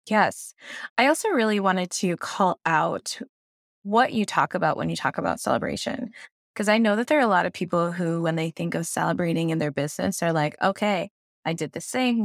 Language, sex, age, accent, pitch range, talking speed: English, female, 20-39, American, 160-215 Hz, 210 wpm